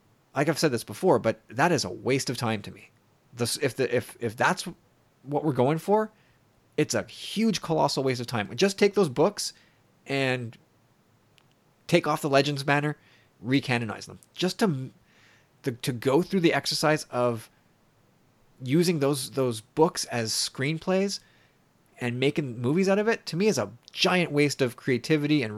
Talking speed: 170 wpm